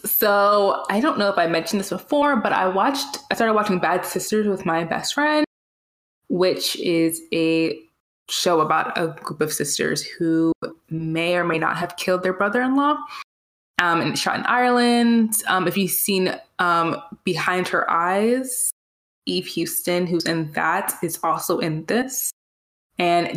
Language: English